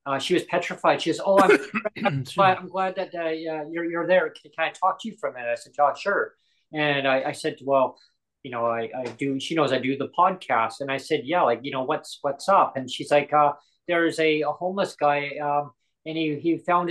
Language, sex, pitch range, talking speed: English, male, 140-170 Hz, 250 wpm